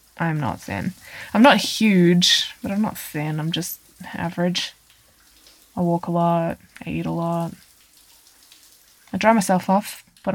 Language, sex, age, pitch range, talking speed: English, female, 20-39, 150-200 Hz, 150 wpm